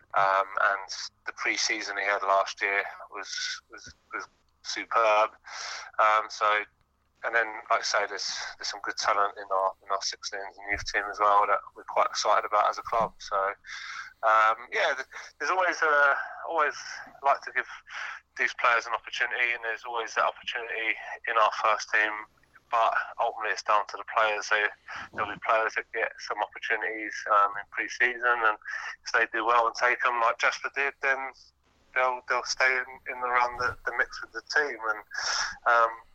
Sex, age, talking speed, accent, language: male, 20-39, 180 wpm, British, English